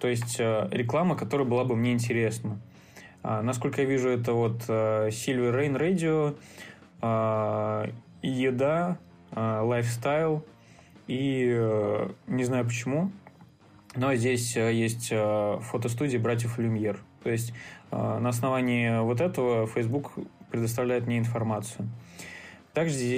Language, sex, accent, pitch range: Russian, male, native, 115-135 Hz